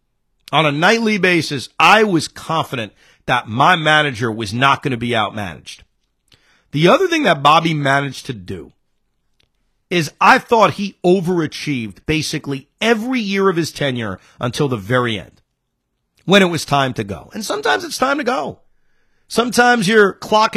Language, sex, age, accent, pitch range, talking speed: English, male, 40-59, American, 140-205 Hz, 160 wpm